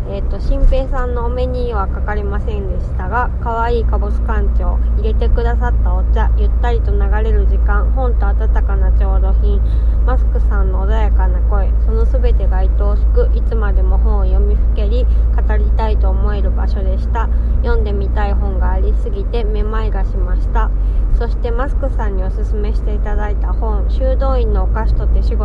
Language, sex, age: Japanese, female, 20-39